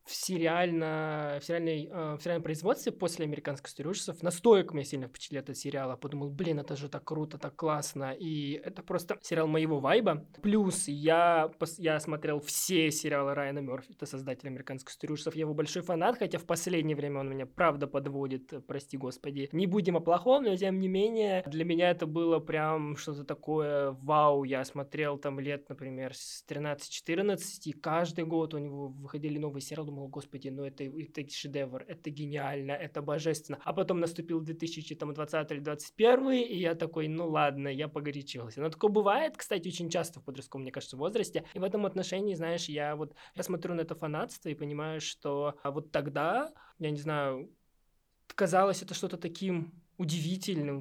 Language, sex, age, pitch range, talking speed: Russian, male, 20-39, 145-175 Hz, 170 wpm